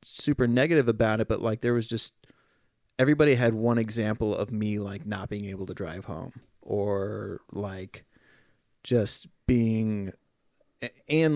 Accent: American